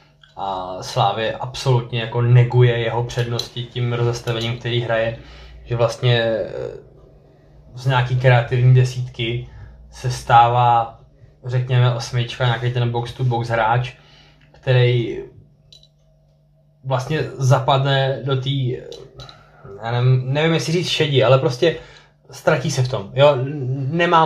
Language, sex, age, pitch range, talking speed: Czech, male, 20-39, 120-140 Hz, 105 wpm